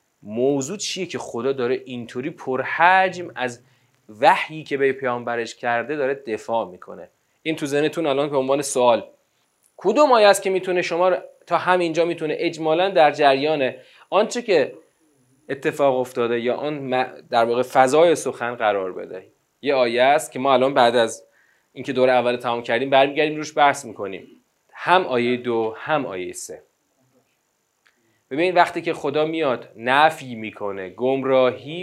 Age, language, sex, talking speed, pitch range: 30-49, Persian, male, 145 wpm, 120-170 Hz